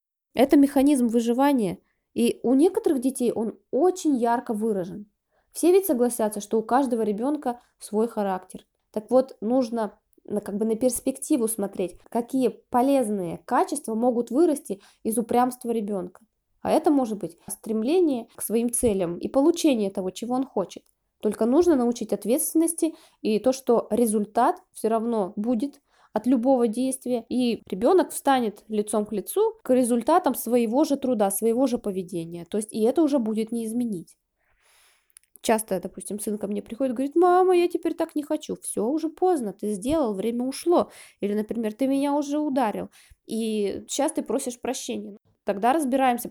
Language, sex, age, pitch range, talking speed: Russian, female, 20-39, 215-285 Hz, 155 wpm